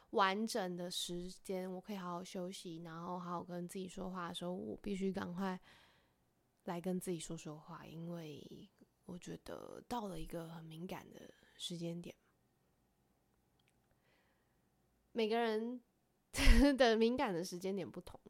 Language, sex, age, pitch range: Chinese, female, 20-39, 175-210 Hz